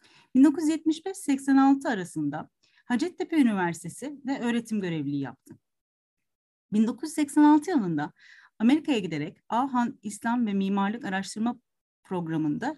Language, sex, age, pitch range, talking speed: Turkish, female, 40-59, 185-285 Hz, 85 wpm